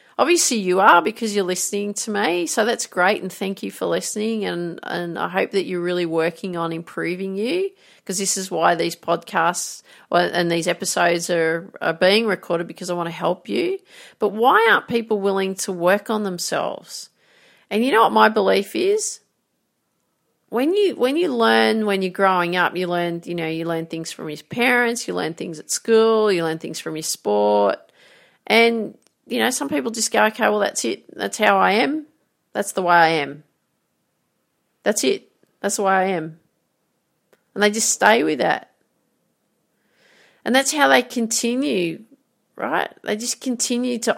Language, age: English, 40-59